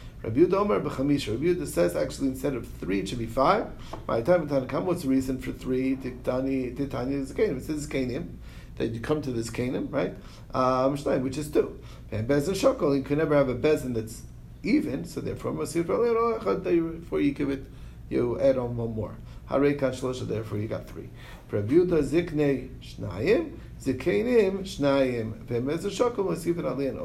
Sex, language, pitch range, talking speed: male, English, 120-155 Hz, 145 wpm